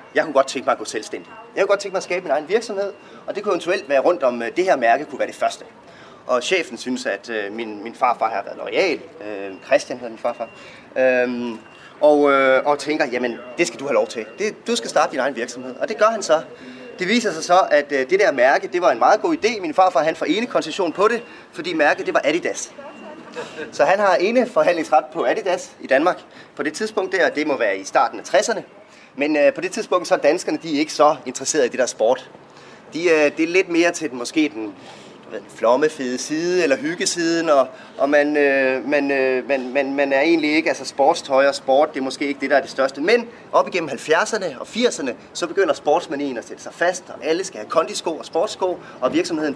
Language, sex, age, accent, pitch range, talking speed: Danish, male, 30-49, native, 130-195 Hz, 220 wpm